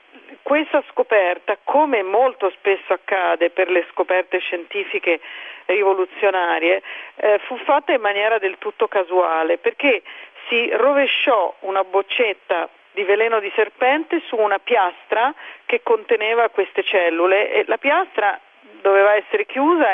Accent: native